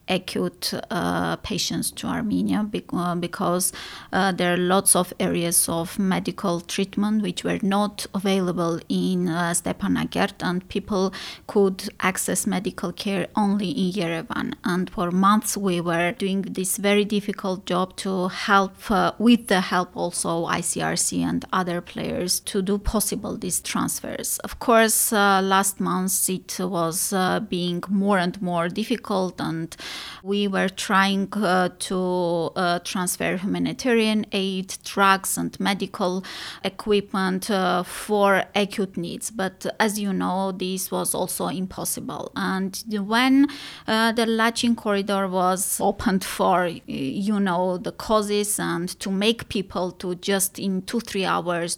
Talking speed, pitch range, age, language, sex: 140 wpm, 180-205 Hz, 20-39, English, female